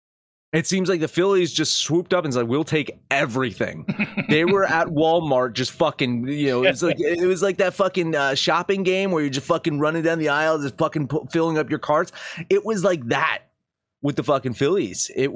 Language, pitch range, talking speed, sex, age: English, 115-165 Hz, 215 wpm, male, 30-49